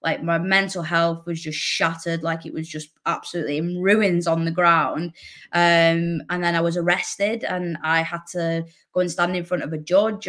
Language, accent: English, British